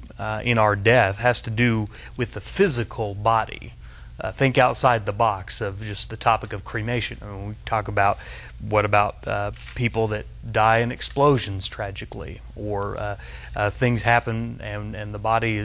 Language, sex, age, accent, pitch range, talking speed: English, male, 30-49, American, 105-125 Hz, 165 wpm